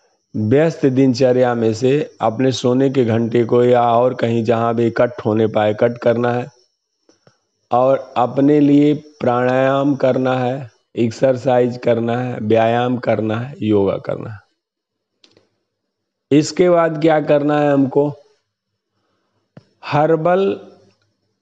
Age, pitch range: 50-69, 115-135 Hz